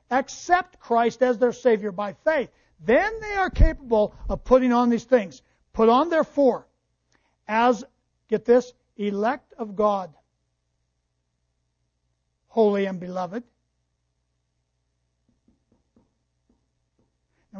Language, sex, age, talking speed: English, male, 60-79, 100 wpm